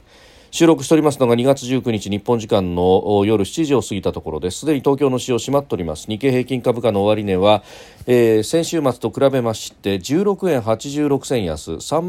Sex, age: male, 40-59